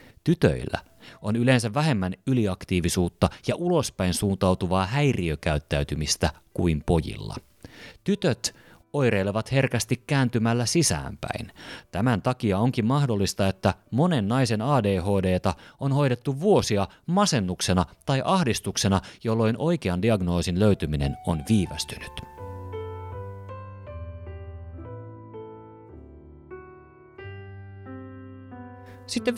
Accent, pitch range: native, 90-130 Hz